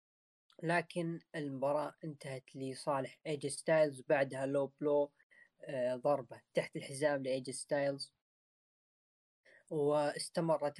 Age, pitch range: 10-29, 135-160 Hz